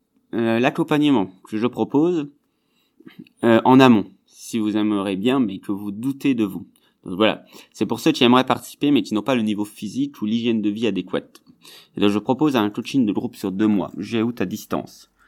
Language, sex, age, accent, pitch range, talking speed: French, male, 30-49, French, 100-125 Hz, 210 wpm